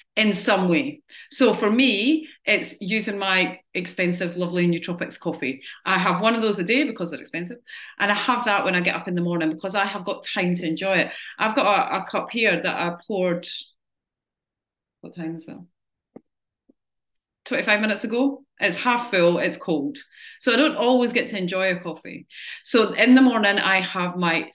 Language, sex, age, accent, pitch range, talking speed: English, female, 30-49, British, 180-245 Hz, 195 wpm